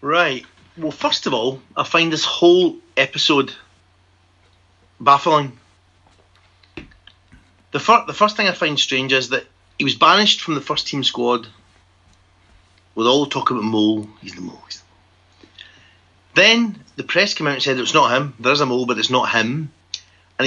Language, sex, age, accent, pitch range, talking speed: English, male, 30-49, British, 95-155 Hz, 165 wpm